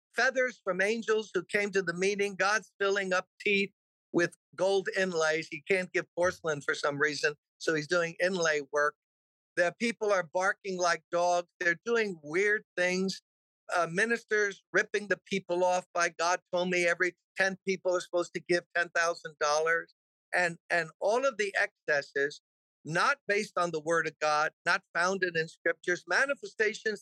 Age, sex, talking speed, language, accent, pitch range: 50-69, male, 160 wpm, English, American, 170-210 Hz